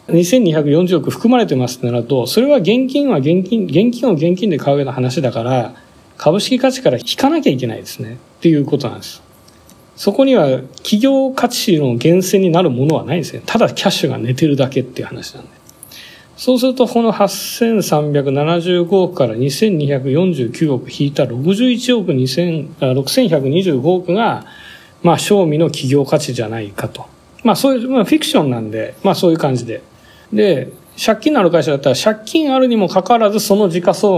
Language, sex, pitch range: Japanese, male, 130-200 Hz